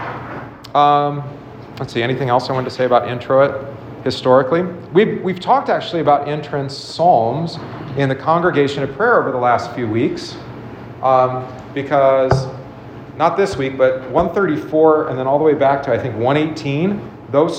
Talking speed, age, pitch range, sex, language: 165 wpm, 40-59, 130-155 Hz, male, English